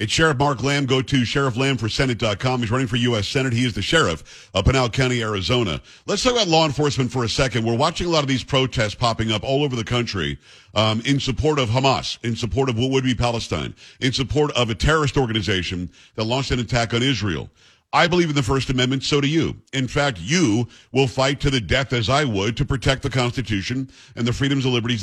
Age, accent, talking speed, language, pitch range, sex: 50-69, American, 225 wpm, English, 120-150 Hz, male